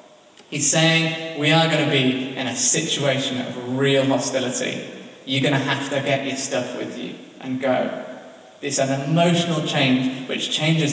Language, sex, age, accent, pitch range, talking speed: English, male, 20-39, British, 140-175 Hz, 170 wpm